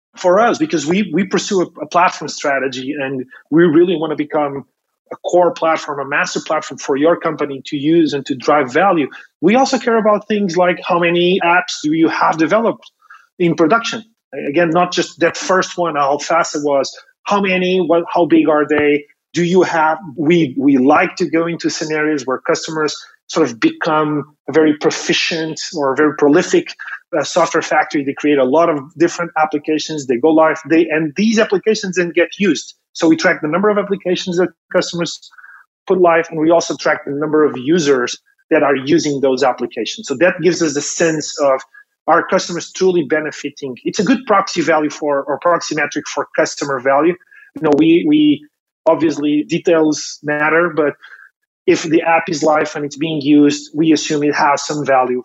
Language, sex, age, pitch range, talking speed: English, male, 30-49, 150-185 Hz, 190 wpm